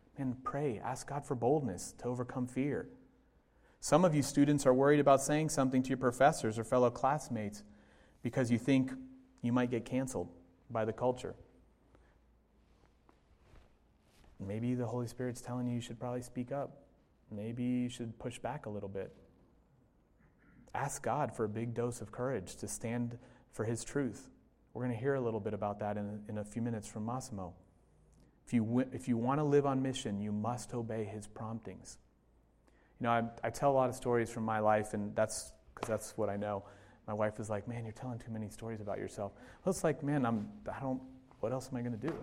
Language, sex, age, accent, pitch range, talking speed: English, male, 30-49, American, 110-135 Hz, 200 wpm